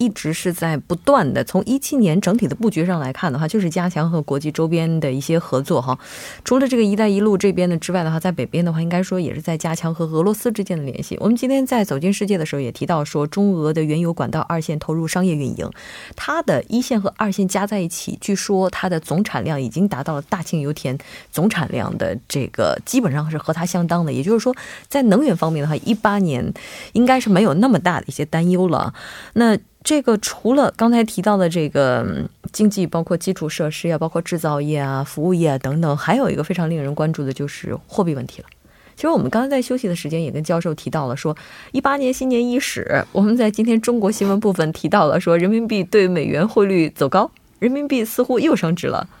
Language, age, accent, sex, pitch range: Korean, 20-39, Chinese, female, 160-215 Hz